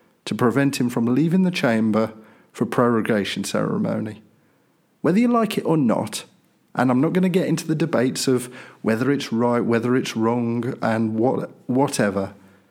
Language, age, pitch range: English, 50-69, 120-160 Hz